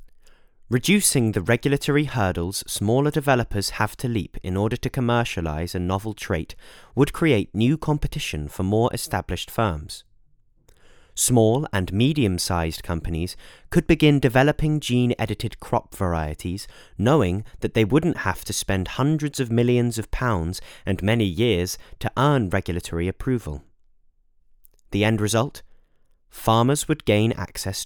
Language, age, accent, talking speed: English, 30-49, British, 130 wpm